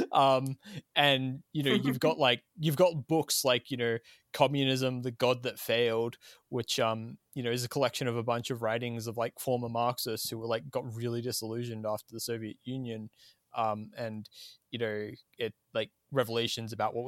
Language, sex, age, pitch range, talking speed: English, male, 20-39, 120-150 Hz, 185 wpm